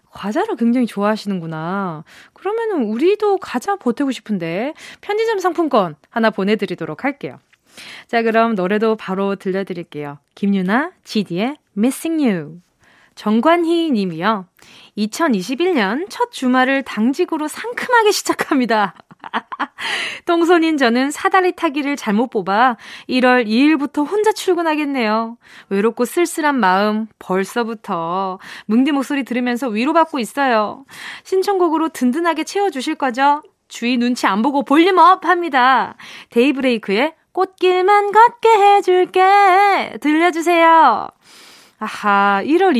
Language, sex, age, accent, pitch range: Korean, female, 20-39, native, 215-325 Hz